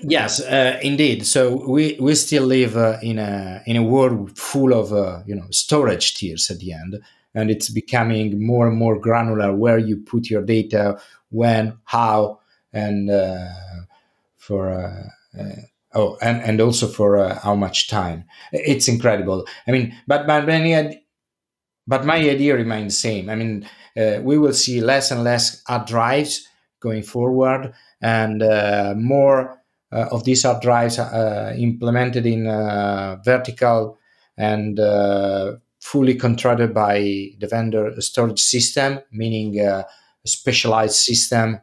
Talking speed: 150 wpm